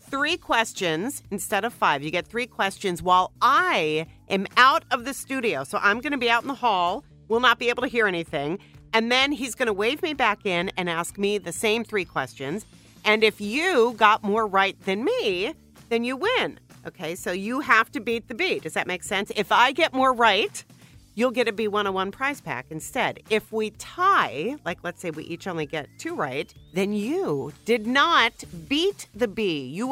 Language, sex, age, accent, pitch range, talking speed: English, female, 40-59, American, 185-270 Hz, 205 wpm